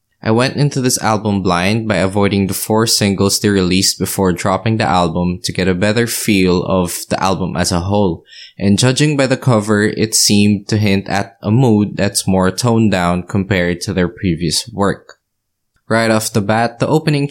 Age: 20-39